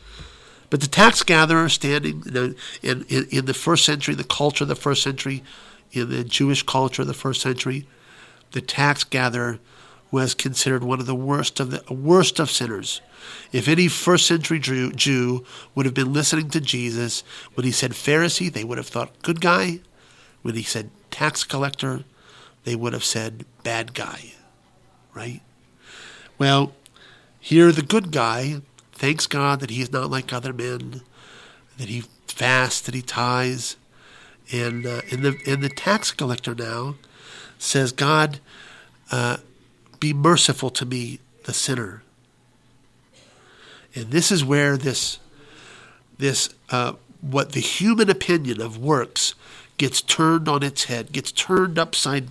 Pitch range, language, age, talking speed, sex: 125-145 Hz, English, 50-69, 150 wpm, male